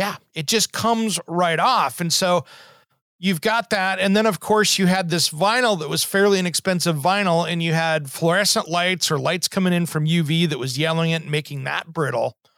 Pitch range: 155-200 Hz